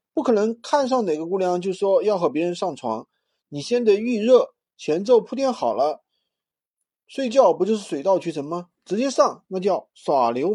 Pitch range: 185-250 Hz